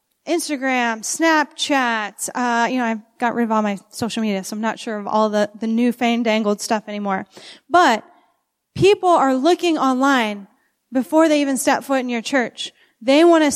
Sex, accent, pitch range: female, American, 235-295 Hz